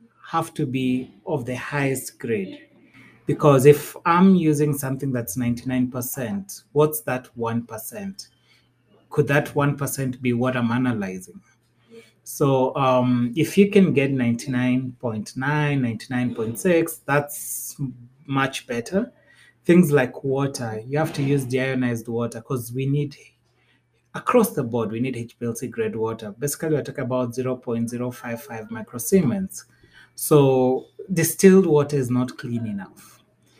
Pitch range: 120-145 Hz